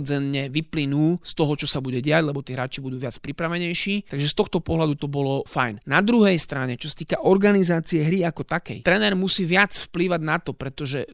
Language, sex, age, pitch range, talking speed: Slovak, male, 20-39, 145-180 Hz, 200 wpm